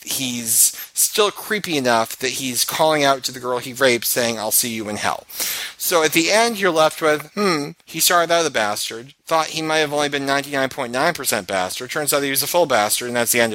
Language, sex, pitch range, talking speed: English, male, 115-145 Hz, 225 wpm